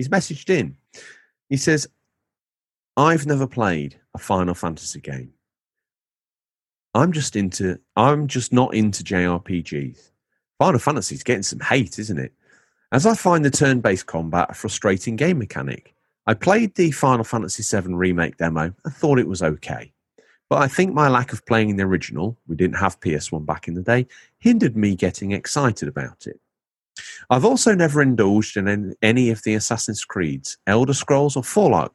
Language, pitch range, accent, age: English, 90-130 Hz, British, 40-59